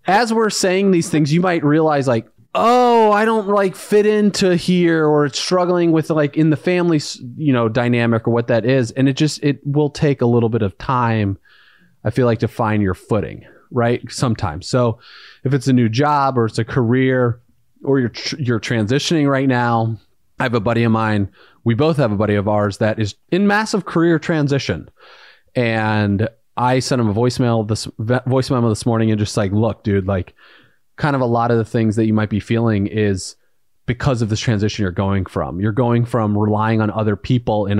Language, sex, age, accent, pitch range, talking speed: English, male, 30-49, American, 110-140 Hz, 205 wpm